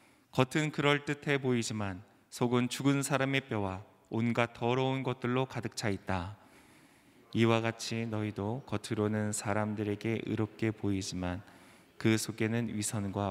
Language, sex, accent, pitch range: Korean, male, native, 105-125 Hz